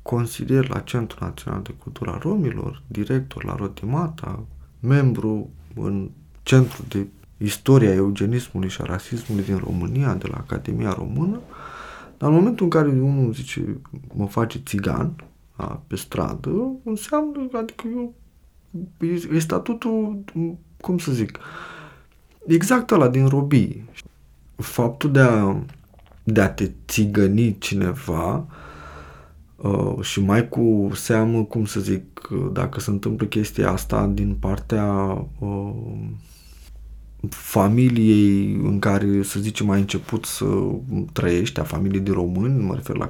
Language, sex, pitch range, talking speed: Romanian, male, 100-150 Hz, 125 wpm